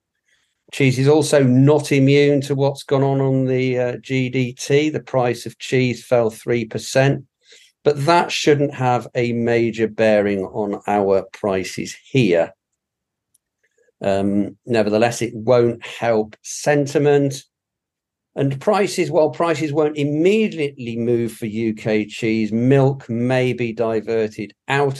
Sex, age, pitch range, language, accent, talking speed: male, 50-69, 115-150 Hz, English, British, 120 wpm